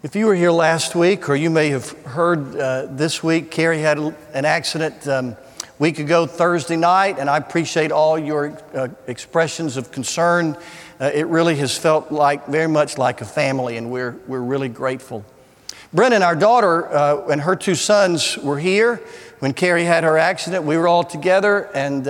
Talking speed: 185 wpm